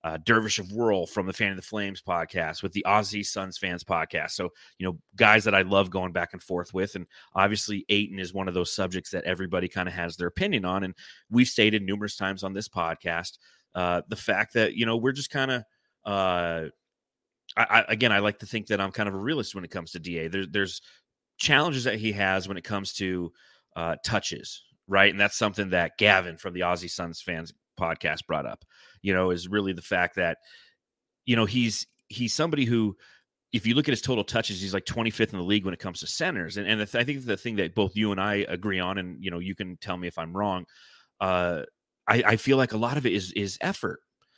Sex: male